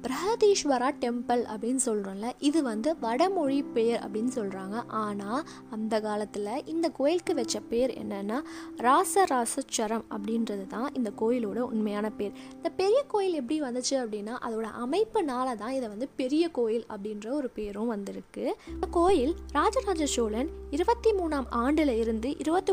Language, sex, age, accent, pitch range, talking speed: Tamil, female, 20-39, native, 220-295 Hz, 135 wpm